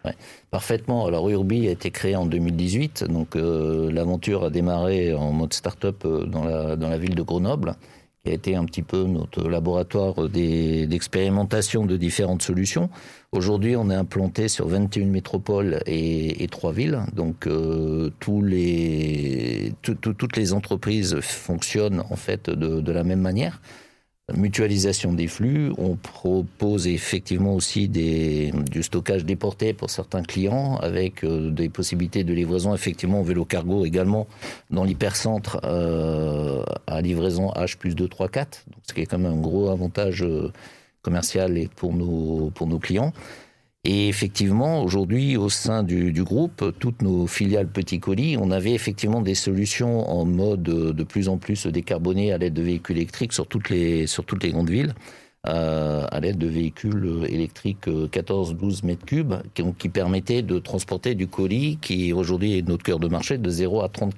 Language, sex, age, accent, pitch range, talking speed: French, male, 50-69, French, 85-105 Hz, 160 wpm